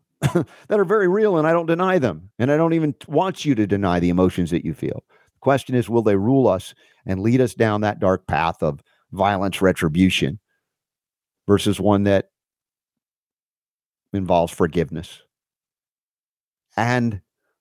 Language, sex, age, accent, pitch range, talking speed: English, male, 50-69, American, 95-130 Hz, 155 wpm